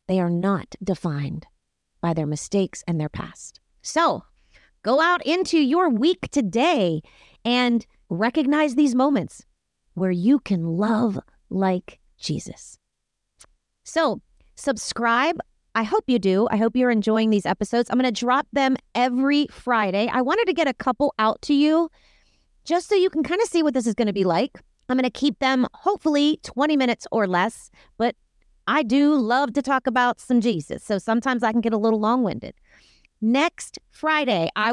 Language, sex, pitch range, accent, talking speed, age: English, female, 200-280 Hz, American, 170 wpm, 30-49